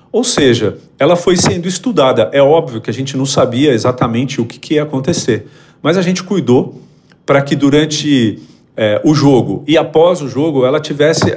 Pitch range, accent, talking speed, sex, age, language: 120-155 Hz, Brazilian, 185 wpm, male, 40-59, Portuguese